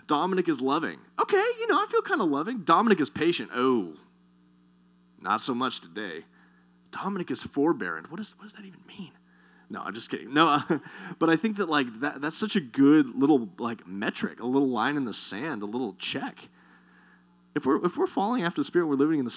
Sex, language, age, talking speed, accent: male, English, 30-49, 210 wpm, American